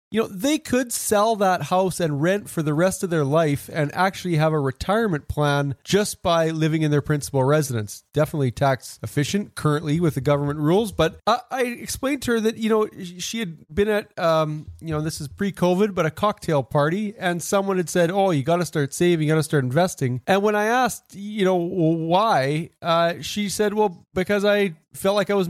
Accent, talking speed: American, 210 wpm